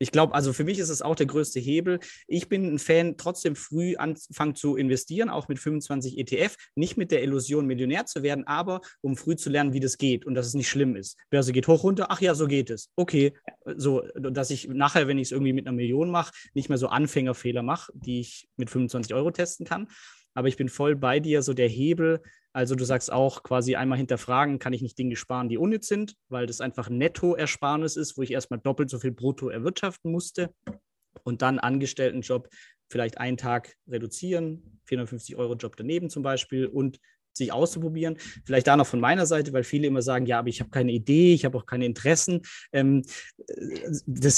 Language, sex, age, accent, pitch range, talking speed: German, male, 20-39, German, 130-160 Hz, 210 wpm